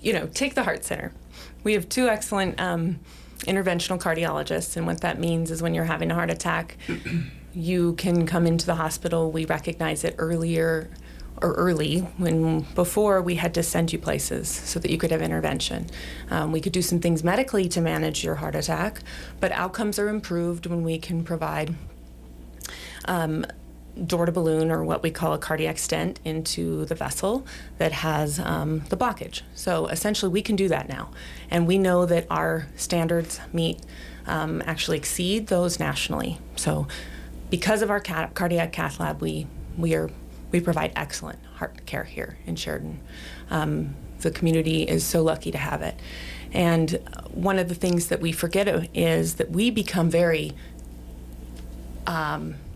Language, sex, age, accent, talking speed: English, female, 30-49, American, 170 wpm